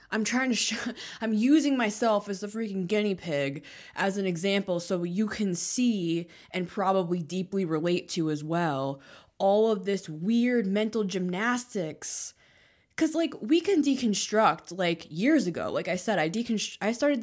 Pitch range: 175-240 Hz